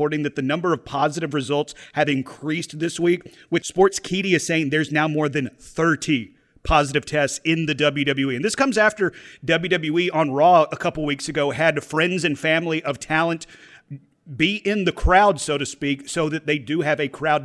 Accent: American